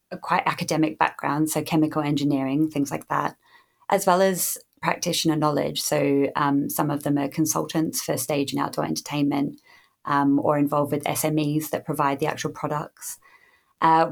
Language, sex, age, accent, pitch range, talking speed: English, female, 20-39, British, 140-160 Hz, 160 wpm